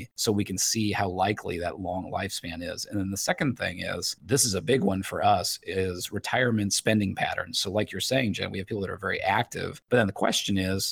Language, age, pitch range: English, 30-49, 95-110 Hz